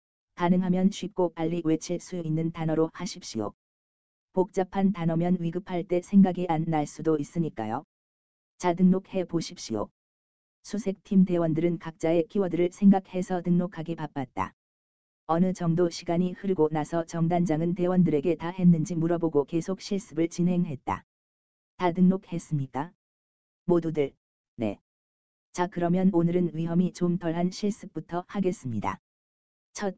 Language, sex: Korean, female